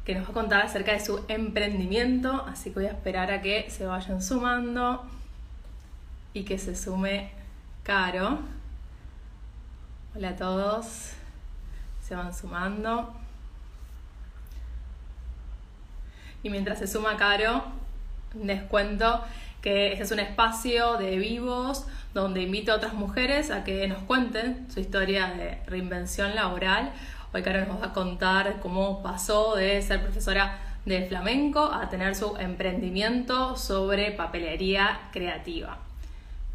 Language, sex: Spanish, female